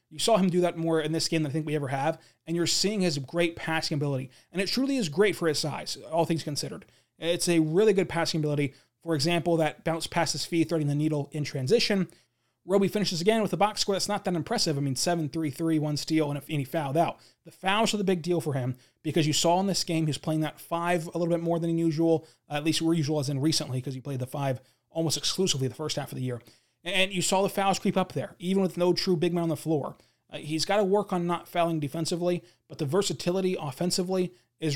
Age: 20-39